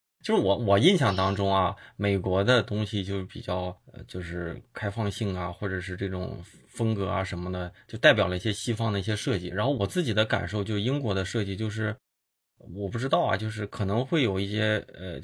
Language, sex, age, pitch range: Chinese, male, 20-39, 95-115 Hz